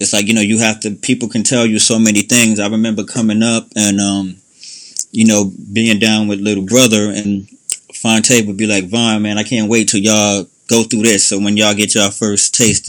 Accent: American